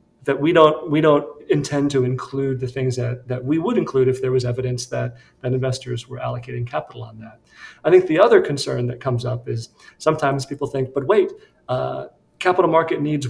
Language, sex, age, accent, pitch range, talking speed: English, male, 40-59, American, 125-155 Hz, 205 wpm